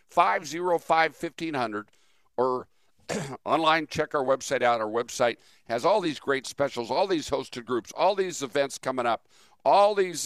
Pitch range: 120-170 Hz